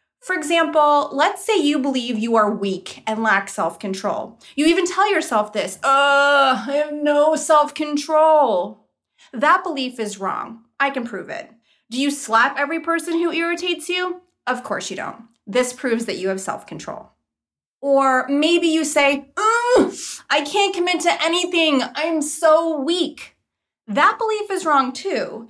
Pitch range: 230-325 Hz